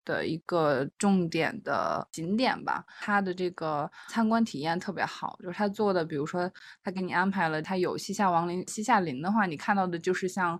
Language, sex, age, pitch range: Chinese, female, 20-39, 170-205 Hz